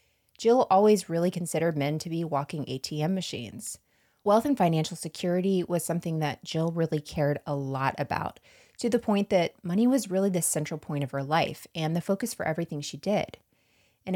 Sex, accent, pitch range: female, American, 150-205 Hz